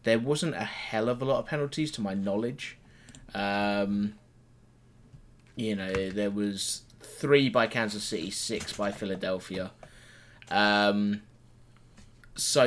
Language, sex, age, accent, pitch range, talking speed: English, male, 20-39, British, 105-120 Hz, 125 wpm